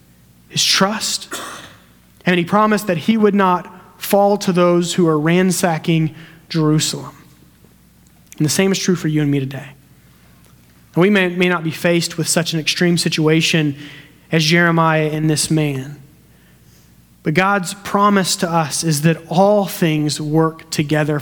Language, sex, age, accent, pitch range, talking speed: English, male, 30-49, American, 145-175 Hz, 155 wpm